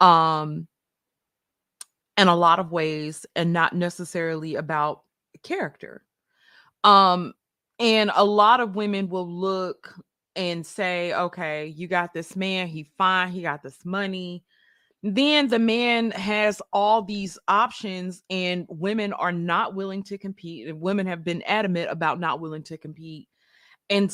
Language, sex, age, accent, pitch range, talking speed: English, female, 20-39, American, 170-210 Hz, 140 wpm